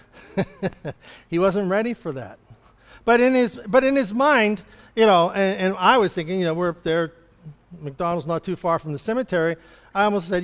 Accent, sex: American, male